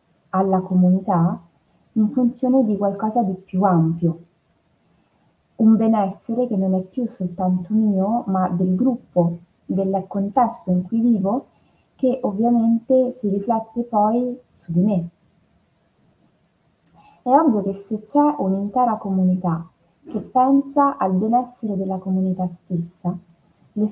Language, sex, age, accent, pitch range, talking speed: Italian, female, 20-39, native, 175-225 Hz, 120 wpm